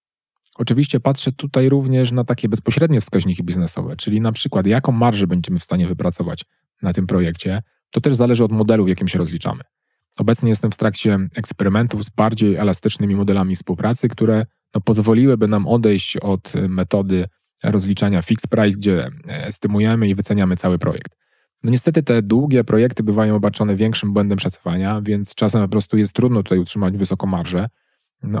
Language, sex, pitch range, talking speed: Polish, male, 100-120 Hz, 165 wpm